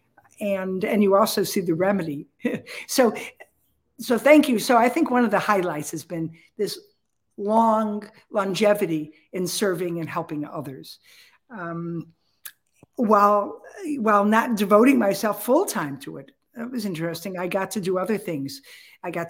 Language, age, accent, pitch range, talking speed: English, 50-69, American, 170-225 Hz, 150 wpm